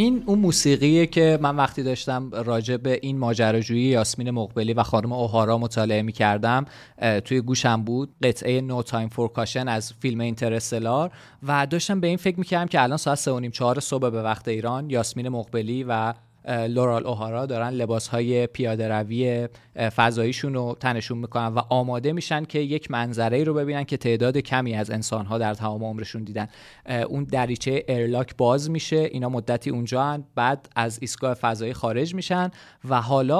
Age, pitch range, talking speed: 30-49, 115-145 Hz, 170 wpm